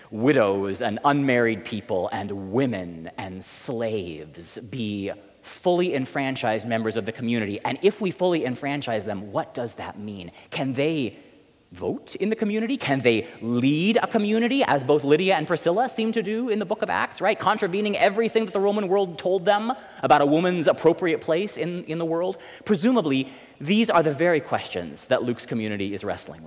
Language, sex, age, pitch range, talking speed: English, male, 30-49, 110-180 Hz, 175 wpm